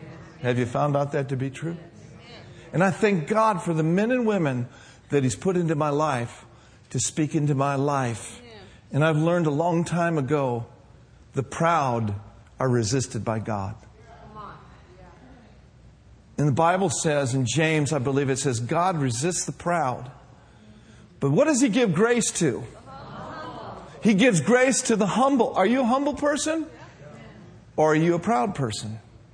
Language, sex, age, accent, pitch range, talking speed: English, male, 50-69, American, 130-200 Hz, 160 wpm